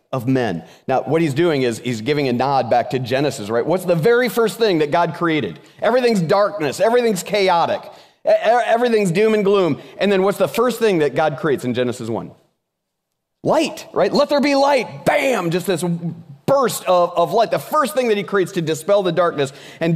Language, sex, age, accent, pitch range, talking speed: English, male, 30-49, American, 160-235 Hz, 200 wpm